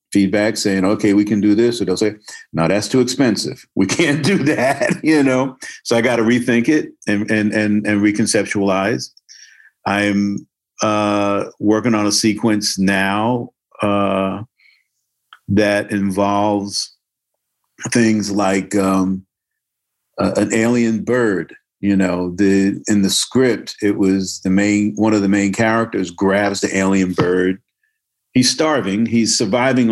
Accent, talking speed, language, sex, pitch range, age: American, 145 wpm, English, male, 100-120 Hz, 50-69